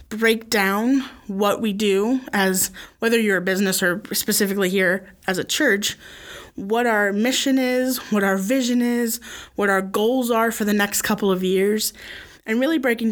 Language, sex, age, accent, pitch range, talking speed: English, female, 20-39, American, 195-230 Hz, 170 wpm